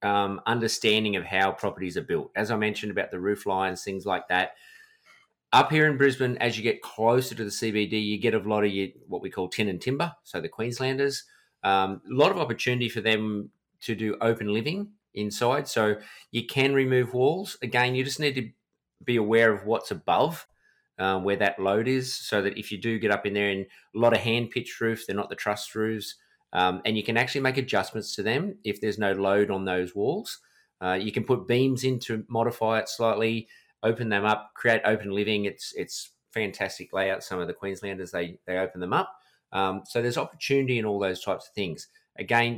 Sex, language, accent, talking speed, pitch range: male, English, Australian, 210 wpm, 100-125 Hz